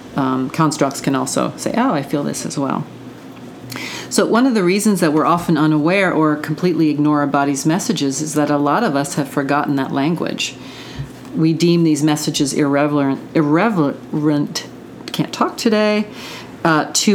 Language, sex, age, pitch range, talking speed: English, female, 40-59, 140-165 Hz, 165 wpm